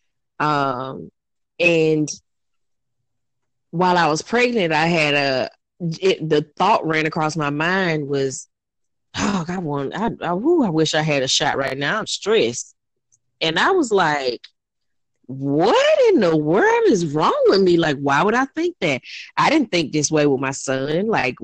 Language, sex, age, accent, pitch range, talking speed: English, female, 20-39, American, 140-170 Hz, 160 wpm